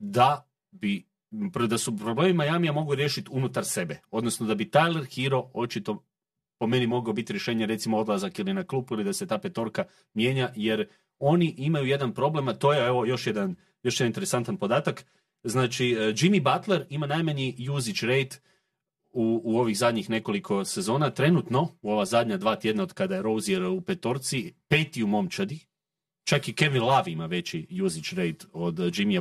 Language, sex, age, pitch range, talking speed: Croatian, male, 40-59, 120-185 Hz, 175 wpm